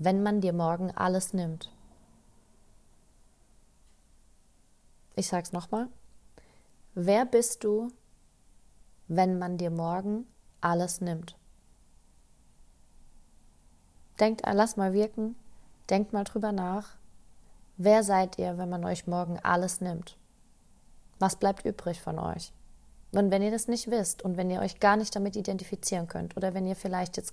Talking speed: 135 wpm